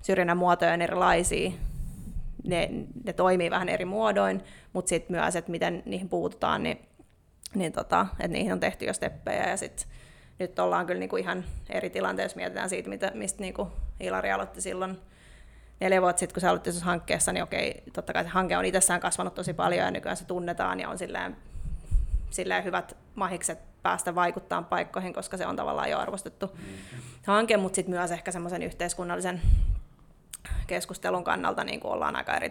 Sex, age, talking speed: female, 20-39, 170 wpm